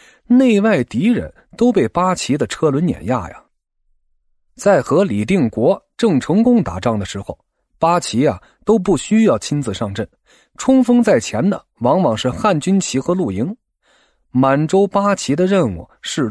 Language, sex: Chinese, male